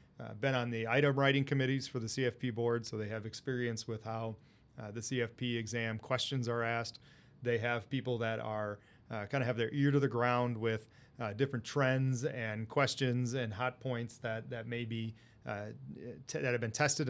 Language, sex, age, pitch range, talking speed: English, male, 30-49, 115-130 Hz, 200 wpm